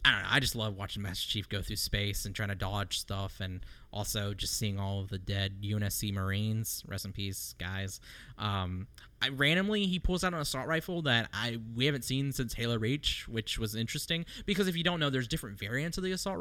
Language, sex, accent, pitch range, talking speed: English, male, American, 105-140 Hz, 225 wpm